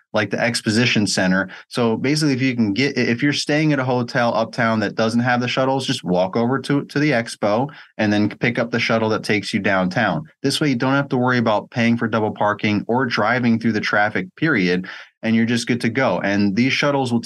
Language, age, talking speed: English, 30-49, 235 wpm